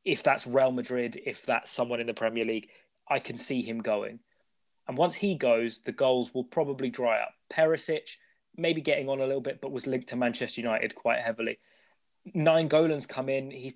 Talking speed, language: 200 wpm, English